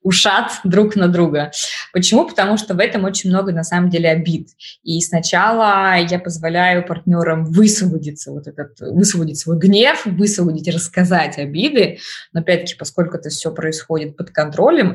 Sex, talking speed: female, 150 wpm